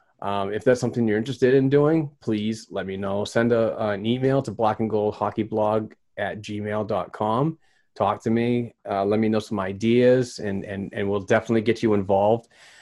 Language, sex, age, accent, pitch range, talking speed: English, male, 30-49, American, 105-120 Hz, 180 wpm